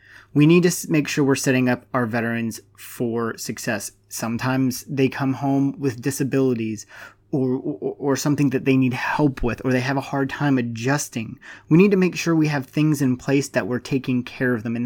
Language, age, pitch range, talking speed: English, 30-49, 120-140 Hz, 205 wpm